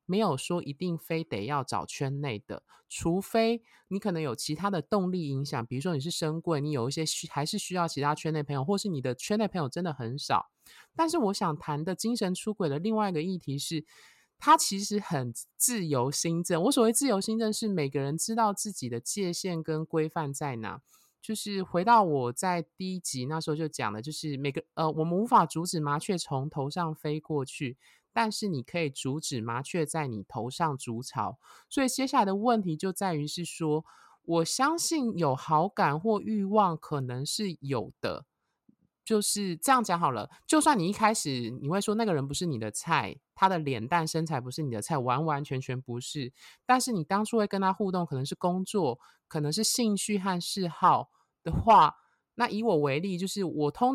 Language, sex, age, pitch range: Chinese, male, 20-39, 140-195 Hz